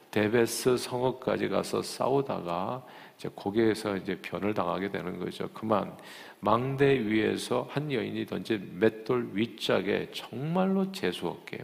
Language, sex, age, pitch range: Korean, male, 50-69, 110-170 Hz